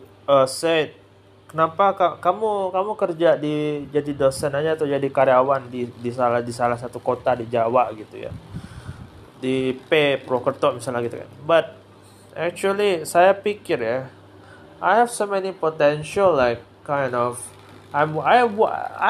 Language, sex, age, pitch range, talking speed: Indonesian, male, 20-39, 120-160 Hz, 150 wpm